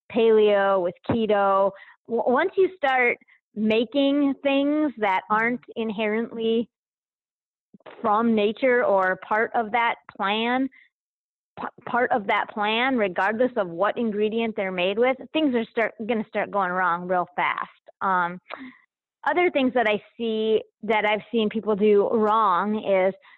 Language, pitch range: English, 200-235 Hz